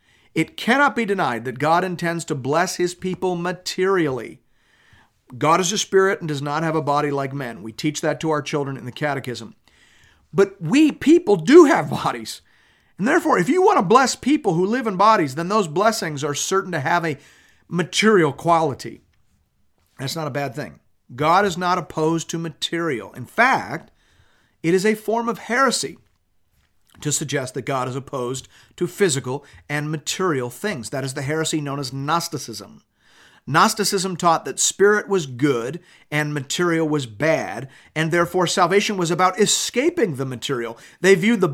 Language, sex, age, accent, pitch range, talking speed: English, male, 50-69, American, 145-195 Hz, 170 wpm